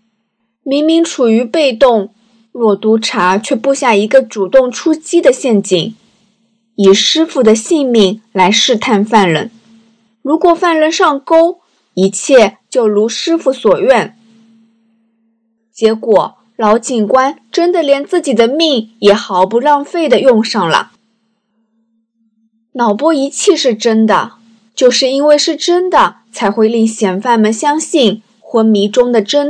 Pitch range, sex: 220-275 Hz, female